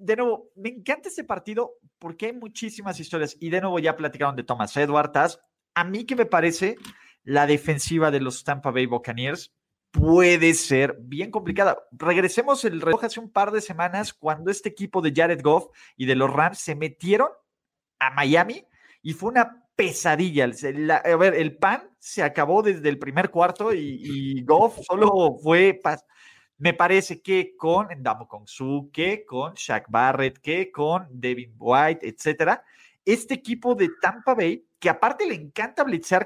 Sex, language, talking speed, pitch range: male, Spanish, 165 wpm, 150-215 Hz